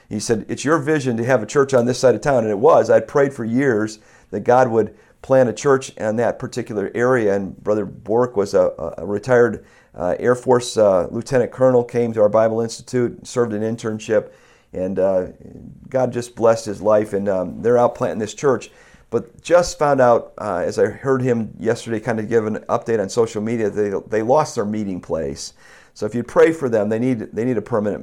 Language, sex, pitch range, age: English, male, 105-125 Hz, 50-69